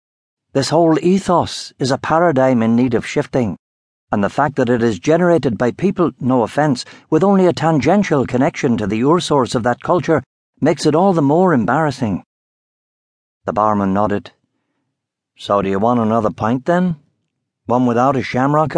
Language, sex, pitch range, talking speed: English, male, 120-170 Hz, 170 wpm